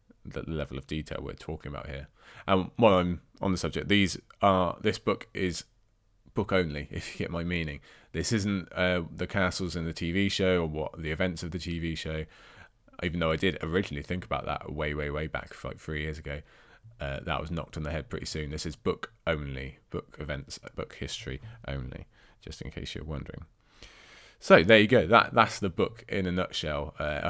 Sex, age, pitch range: male, 20-39, 75-95 Hz